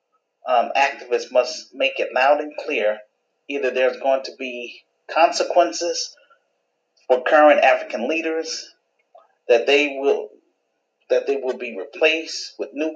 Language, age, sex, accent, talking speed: English, 40-59, male, American, 130 wpm